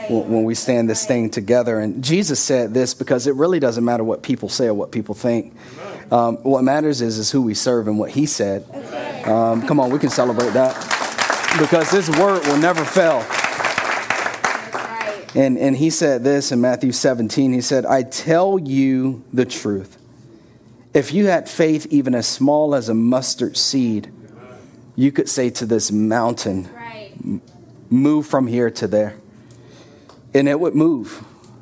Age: 30-49